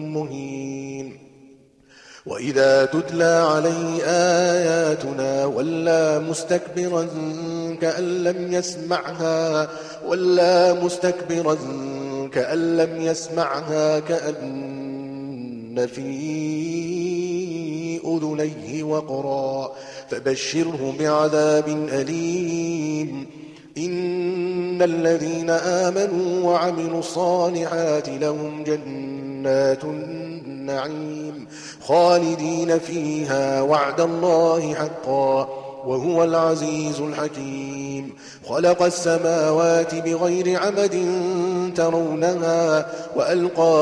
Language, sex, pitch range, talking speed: Arabic, male, 135-165 Hz, 60 wpm